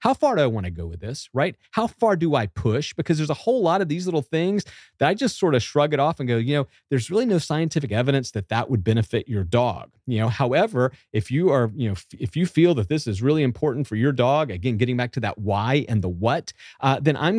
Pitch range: 120-165 Hz